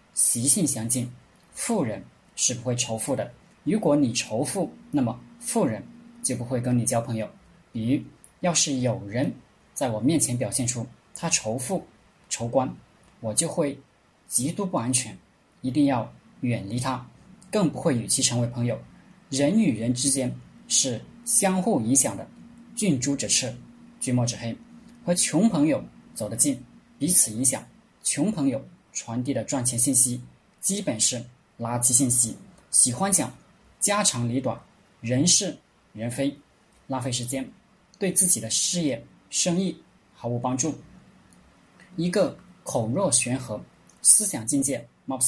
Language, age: Chinese, 20-39